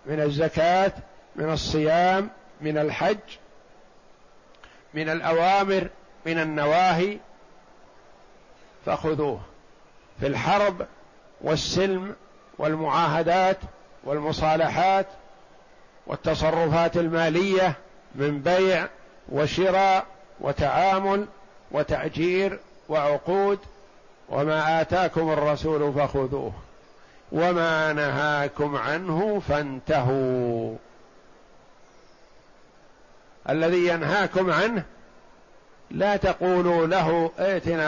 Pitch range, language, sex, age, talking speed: 155-190 Hz, Arabic, male, 50-69, 60 wpm